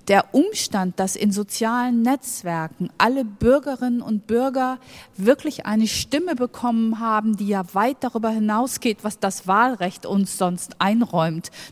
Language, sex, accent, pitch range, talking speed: English, female, German, 200-250 Hz, 135 wpm